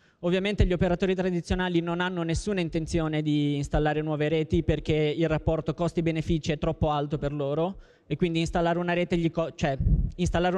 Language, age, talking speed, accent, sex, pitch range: Italian, 20-39, 135 wpm, native, male, 155-180 Hz